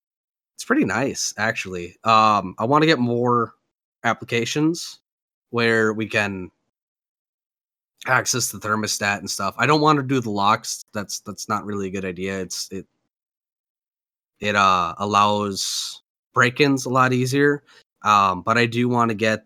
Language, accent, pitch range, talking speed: English, American, 100-120 Hz, 150 wpm